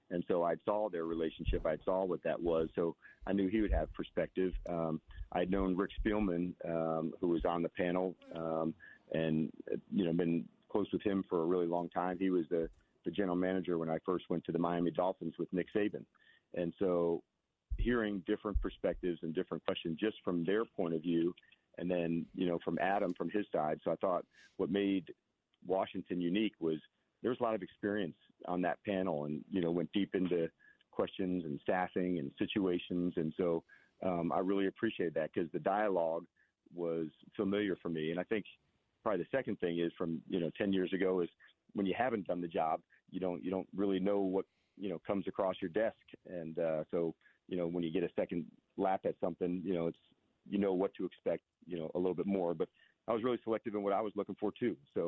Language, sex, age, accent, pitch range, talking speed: English, male, 40-59, American, 85-95 Hz, 215 wpm